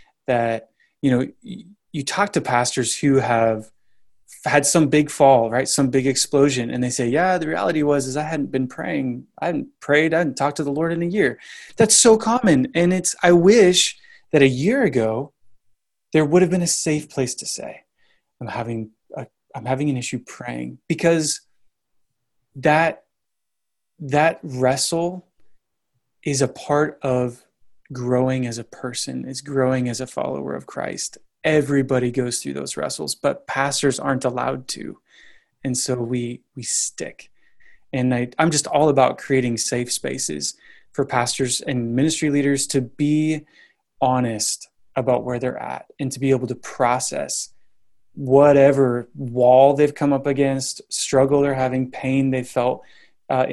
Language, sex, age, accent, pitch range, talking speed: English, male, 20-39, American, 125-150 Hz, 160 wpm